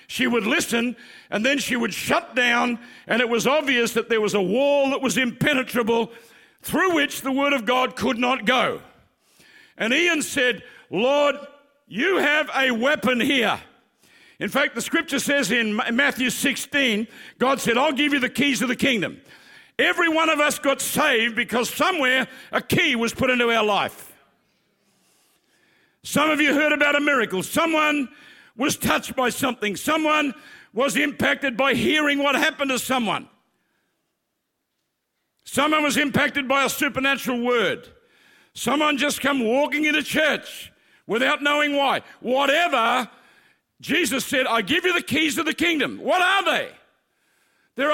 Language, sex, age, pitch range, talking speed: English, male, 60-79, 250-300 Hz, 155 wpm